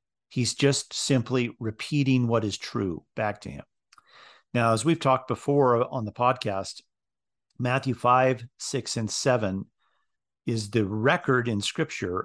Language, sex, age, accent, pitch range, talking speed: English, male, 40-59, American, 105-125 Hz, 135 wpm